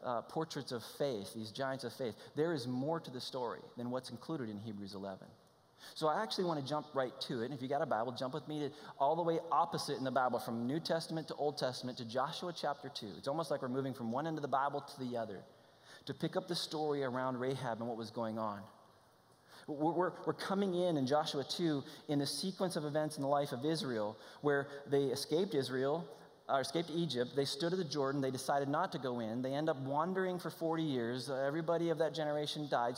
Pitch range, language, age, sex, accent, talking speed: 130-165 Hz, English, 20-39, male, American, 235 wpm